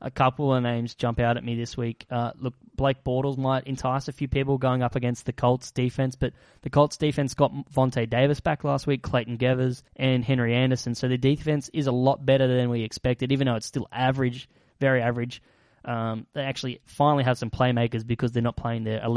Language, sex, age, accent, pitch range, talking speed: English, male, 10-29, Australian, 120-135 Hz, 215 wpm